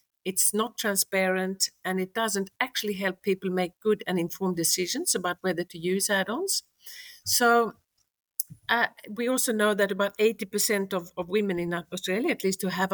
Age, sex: 50-69, female